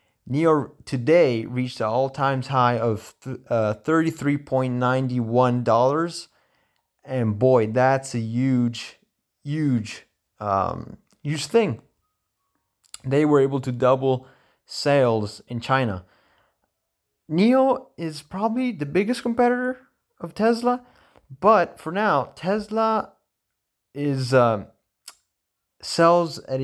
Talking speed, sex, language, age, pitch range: 100 wpm, male, English, 30-49, 115-155 Hz